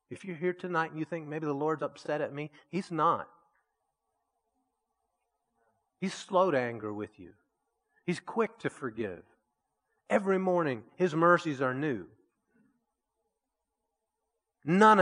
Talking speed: 130 wpm